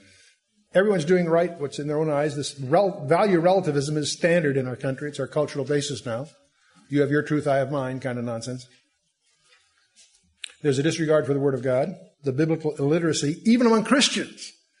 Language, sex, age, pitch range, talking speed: English, male, 60-79, 135-170 Hz, 180 wpm